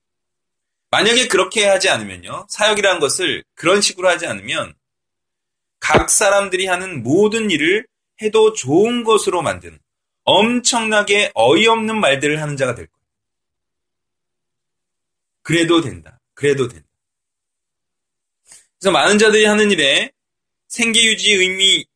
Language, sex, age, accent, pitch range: Korean, male, 30-49, native, 140-225 Hz